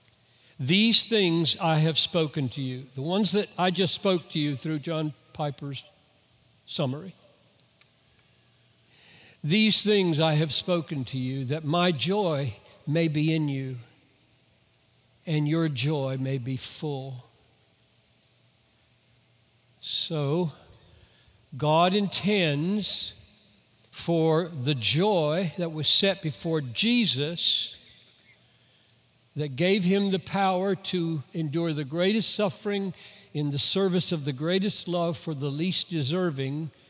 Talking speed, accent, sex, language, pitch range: 115 wpm, American, male, English, 135-175 Hz